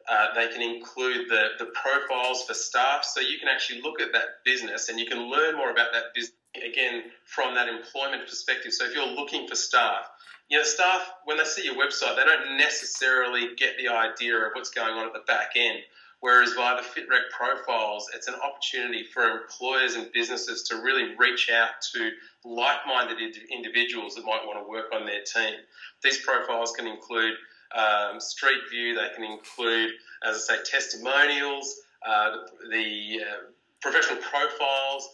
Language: English